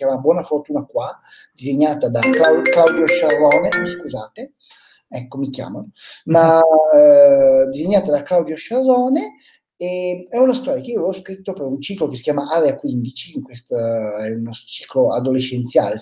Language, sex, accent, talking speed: Italian, male, native, 155 wpm